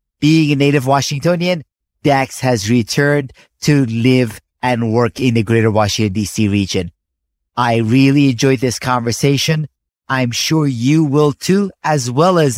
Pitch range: 115-155 Hz